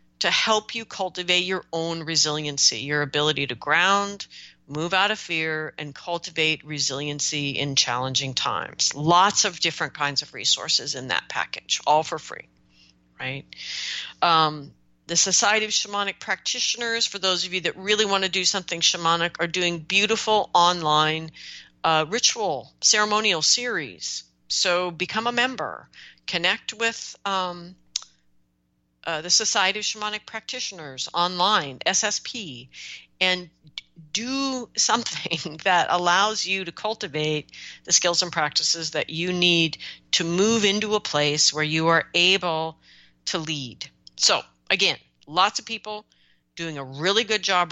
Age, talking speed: 40-59, 140 wpm